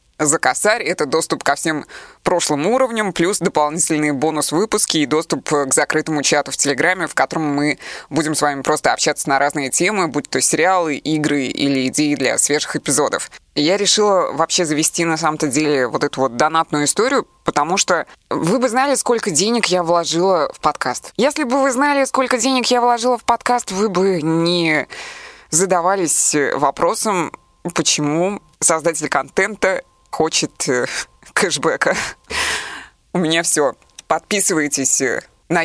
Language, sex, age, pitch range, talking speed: Russian, female, 20-39, 150-200 Hz, 145 wpm